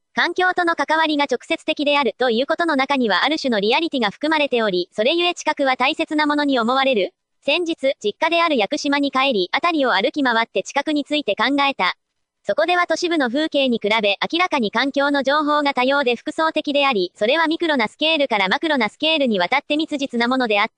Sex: male